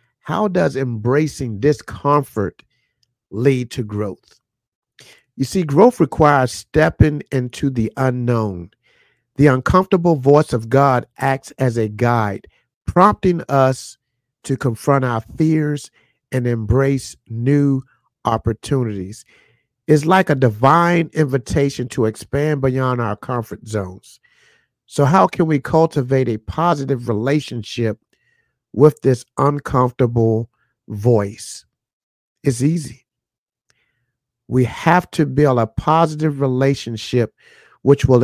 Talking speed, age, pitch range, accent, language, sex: 105 wpm, 50-69, 120-145 Hz, American, English, male